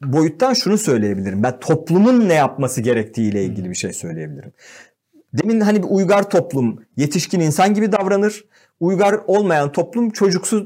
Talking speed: 140 wpm